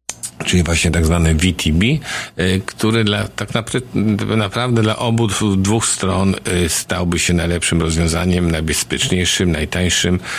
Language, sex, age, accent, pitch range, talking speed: Polish, male, 50-69, native, 85-95 Hz, 110 wpm